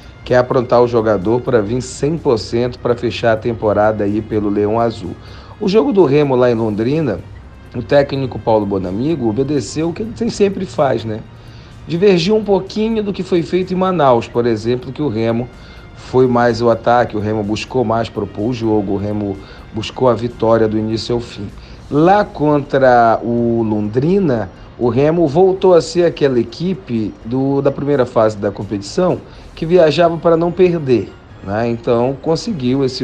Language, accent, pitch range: Portuguese, Brazilian, 110-155 Hz